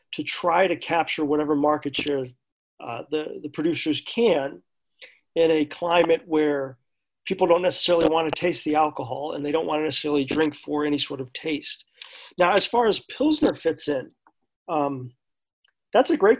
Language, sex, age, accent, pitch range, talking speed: English, male, 40-59, American, 150-190 Hz, 170 wpm